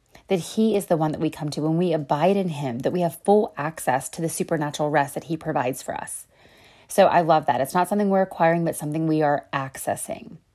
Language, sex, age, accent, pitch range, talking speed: English, female, 30-49, American, 155-190 Hz, 240 wpm